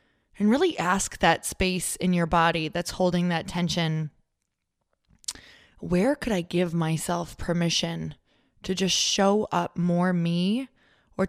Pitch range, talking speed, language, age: 160-180 Hz, 135 wpm, English, 20-39